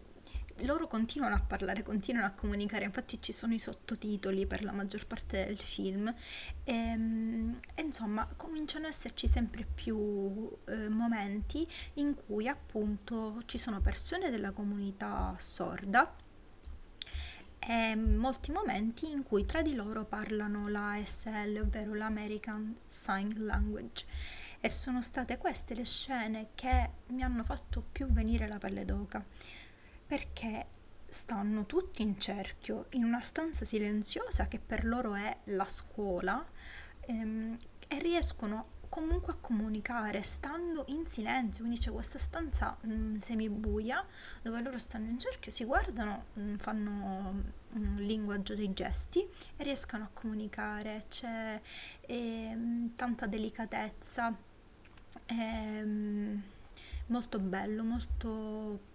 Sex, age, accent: female, 20-39, native